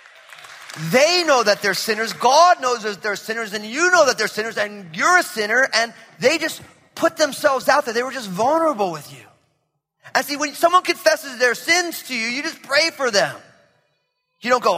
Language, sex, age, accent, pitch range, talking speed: English, male, 30-49, American, 220-295 Hz, 205 wpm